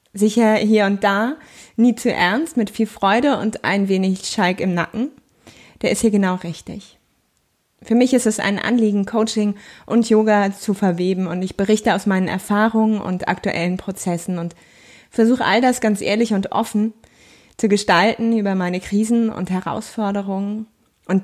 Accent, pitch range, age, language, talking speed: German, 185-220 Hz, 20-39, German, 160 wpm